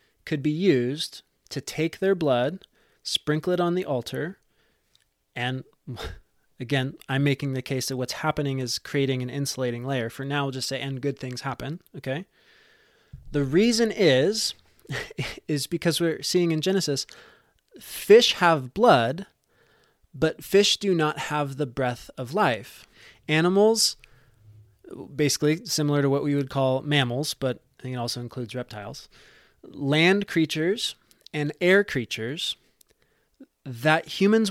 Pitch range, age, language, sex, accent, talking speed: 135-175 Hz, 20-39, English, male, American, 140 wpm